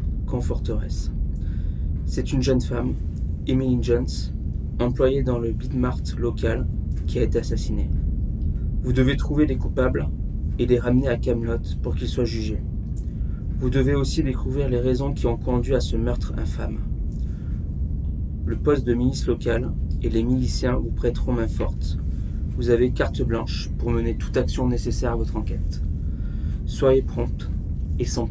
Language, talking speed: French, 155 wpm